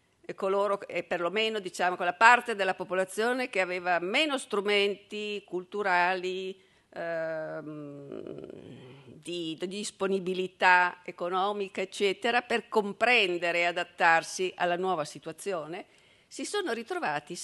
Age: 50-69